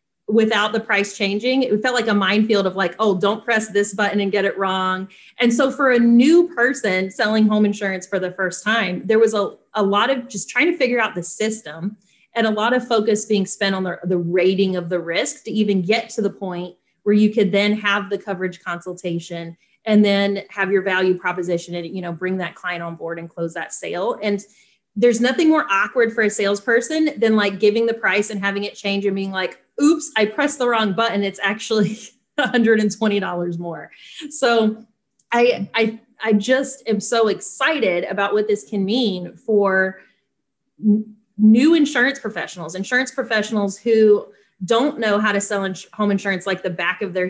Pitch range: 185-225 Hz